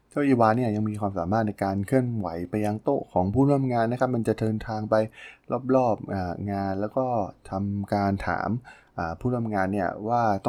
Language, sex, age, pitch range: Thai, male, 20-39, 95-115 Hz